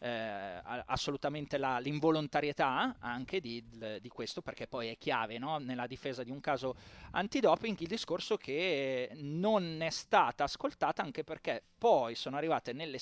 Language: Italian